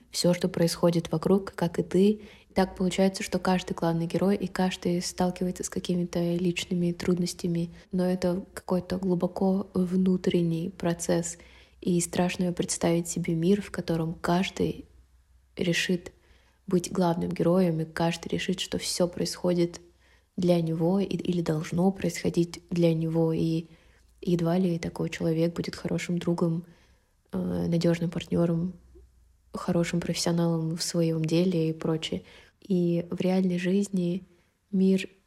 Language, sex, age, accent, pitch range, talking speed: Russian, female, 20-39, native, 170-190 Hz, 125 wpm